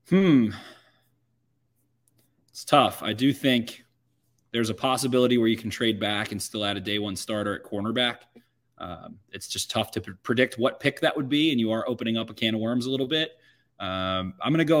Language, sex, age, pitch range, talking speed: English, male, 20-39, 105-125 Hz, 205 wpm